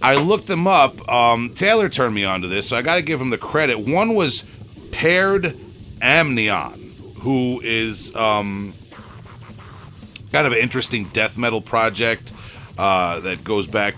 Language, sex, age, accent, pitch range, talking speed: English, male, 30-49, American, 105-140 Hz, 160 wpm